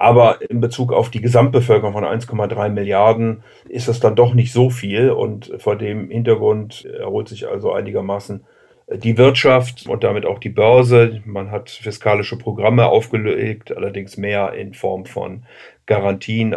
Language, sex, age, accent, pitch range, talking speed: German, male, 40-59, German, 105-125 Hz, 150 wpm